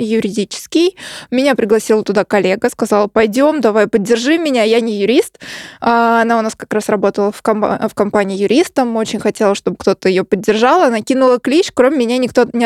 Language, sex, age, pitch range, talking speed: Russian, female, 20-39, 215-265 Hz, 170 wpm